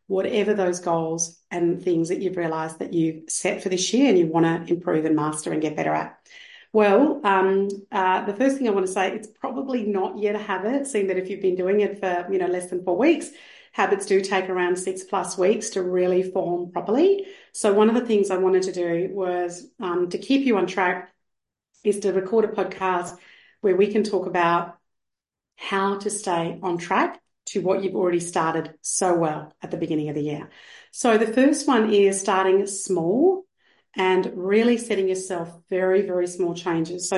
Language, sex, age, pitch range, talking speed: English, female, 40-59, 180-210 Hz, 200 wpm